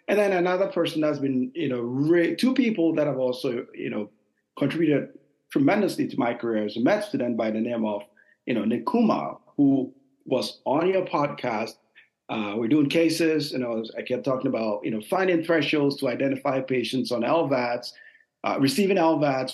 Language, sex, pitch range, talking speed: English, male, 120-165 Hz, 180 wpm